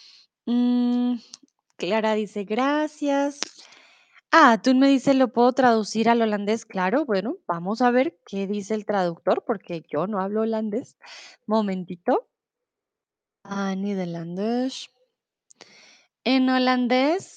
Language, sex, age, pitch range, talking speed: Spanish, female, 20-39, 205-275 Hz, 110 wpm